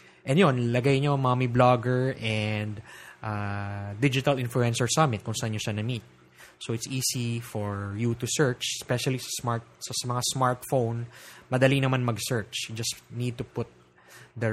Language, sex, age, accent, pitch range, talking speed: English, male, 20-39, Filipino, 110-145 Hz, 155 wpm